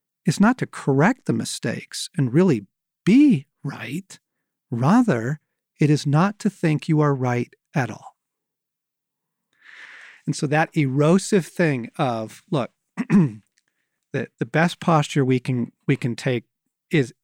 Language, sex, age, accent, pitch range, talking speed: English, male, 40-59, American, 135-175 Hz, 135 wpm